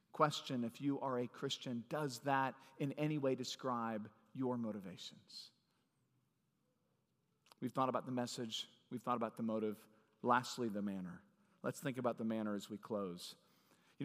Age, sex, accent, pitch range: 40-59, male, American, 120-150 Hz